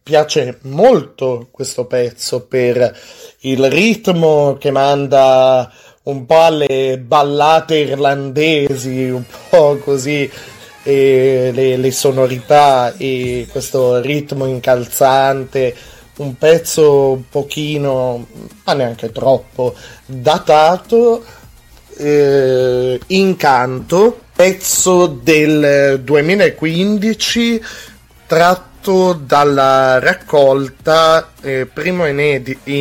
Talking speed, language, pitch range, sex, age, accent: 80 wpm, Italian, 125-155 Hz, male, 30-49, native